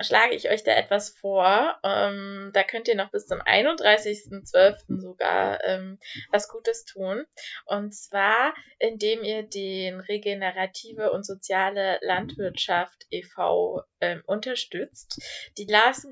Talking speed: 125 wpm